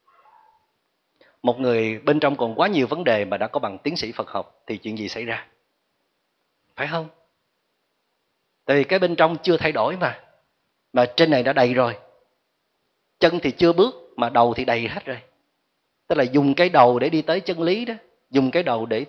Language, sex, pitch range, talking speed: Vietnamese, male, 115-170 Hz, 200 wpm